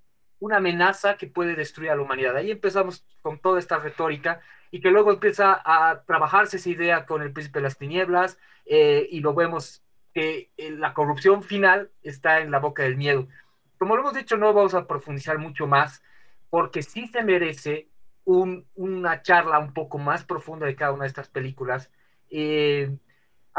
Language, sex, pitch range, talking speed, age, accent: Spanish, male, 145-190 Hz, 180 wpm, 30-49, Mexican